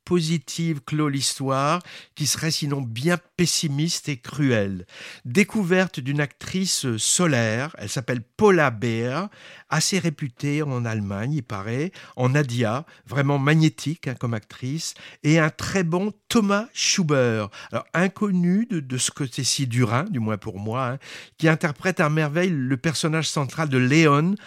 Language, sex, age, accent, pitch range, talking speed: French, male, 60-79, French, 130-170 Hz, 140 wpm